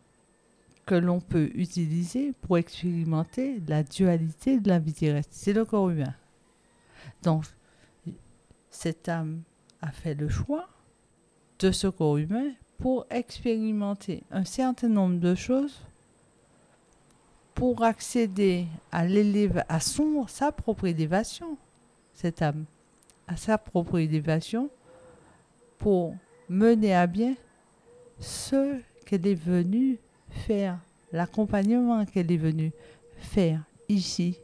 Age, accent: 50-69, French